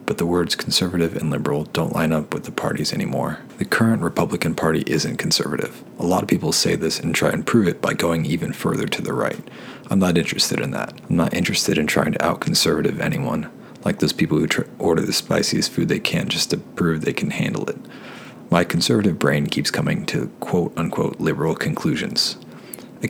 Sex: male